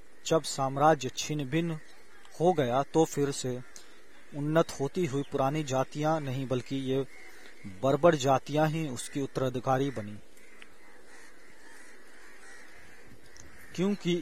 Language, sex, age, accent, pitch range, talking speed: Hindi, male, 40-59, native, 130-155 Hz, 100 wpm